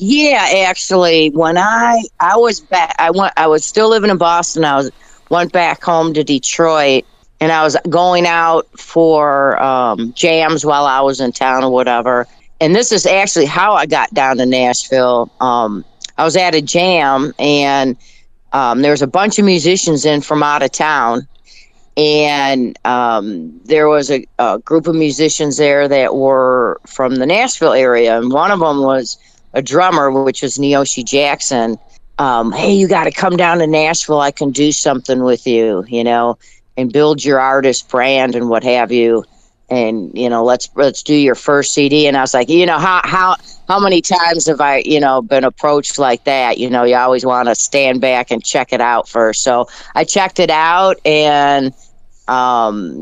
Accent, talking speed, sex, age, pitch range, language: American, 190 wpm, female, 40-59, 125-160 Hz, English